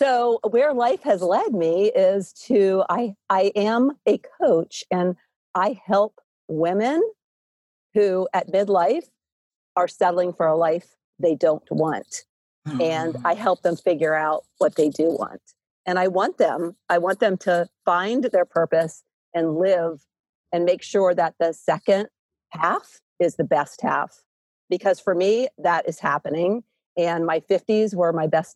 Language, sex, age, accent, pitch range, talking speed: English, female, 50-69, American, 165-200 Hz, 155 wpm